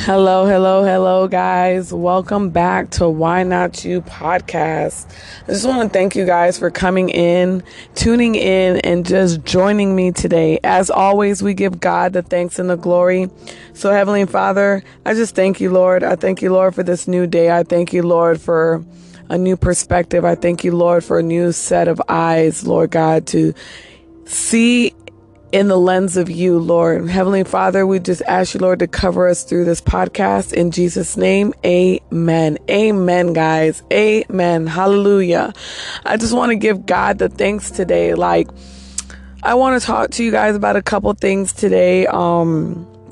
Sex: female